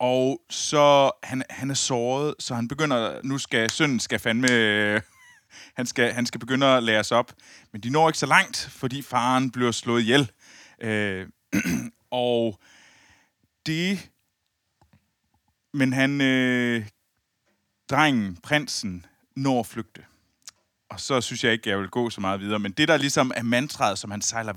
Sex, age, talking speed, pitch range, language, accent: male, 30-49, 160 wpm, 110-135 Hz, Danish, native